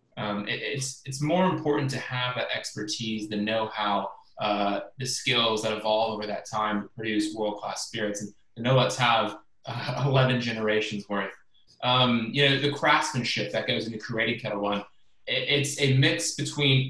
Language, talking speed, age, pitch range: English, 170 wpm, 20-39, 110-135 Hz